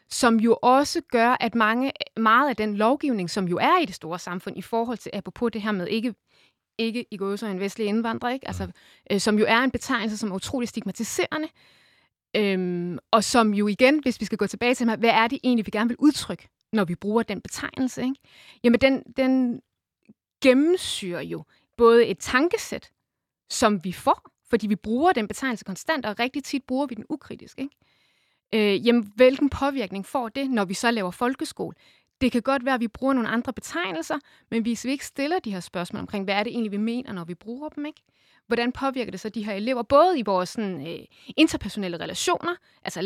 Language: Danish